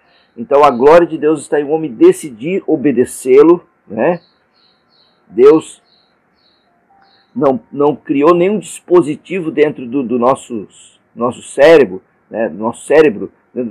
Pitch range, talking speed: 125-180 Hz, 125 wpm